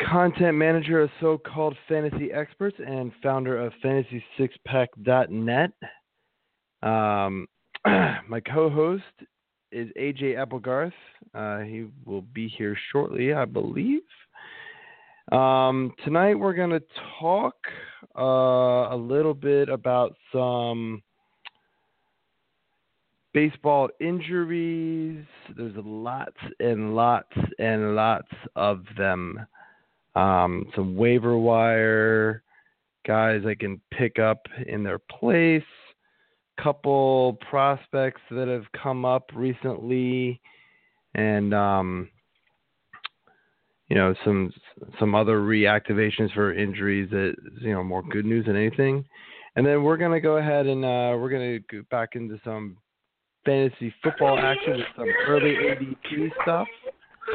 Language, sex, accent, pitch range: English, male, American, 110-150 Hz